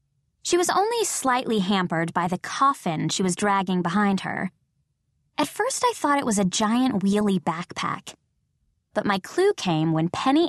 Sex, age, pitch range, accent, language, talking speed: female, 20-39, 175-275 Hz, American, English, 165 wpm